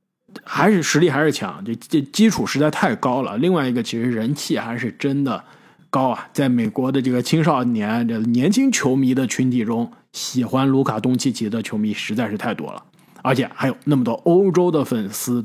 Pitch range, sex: 125-190 Hz, male